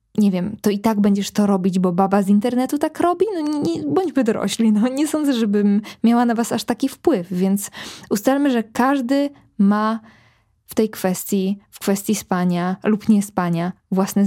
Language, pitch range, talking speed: Polish, 195-240 Hz, 175 wpm